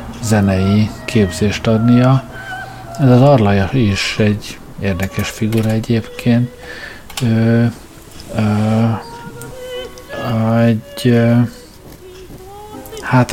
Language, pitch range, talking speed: Hungarian, 105-120 Hz, 70 wpm